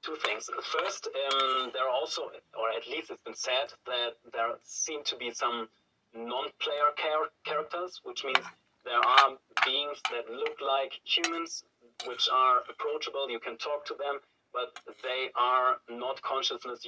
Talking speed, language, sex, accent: 160 wpm, English, male, German